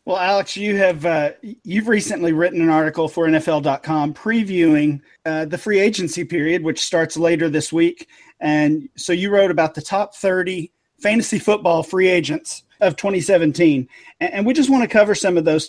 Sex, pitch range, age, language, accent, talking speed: male, 155-195 Hz, 40-59, English, American, 175 wpm